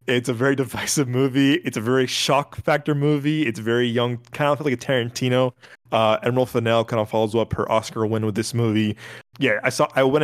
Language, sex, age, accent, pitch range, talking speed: English, male, 20-39, American, 115-135 Hz, 215 wpm